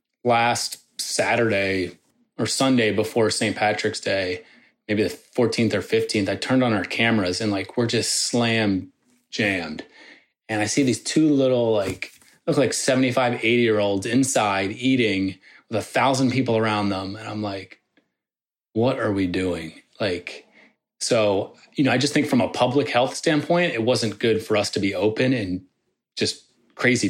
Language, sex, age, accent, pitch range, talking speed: English, male, 30-49, American, 105-120 Hz, 160 wpm